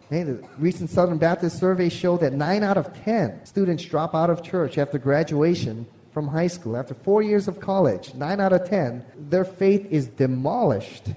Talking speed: 190 wpm